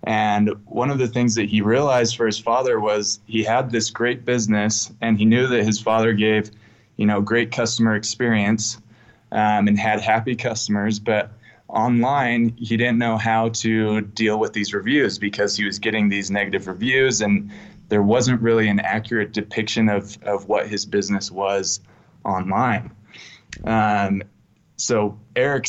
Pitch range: 105-115 Hz